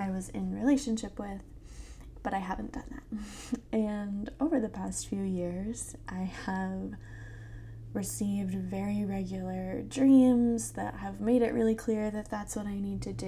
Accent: American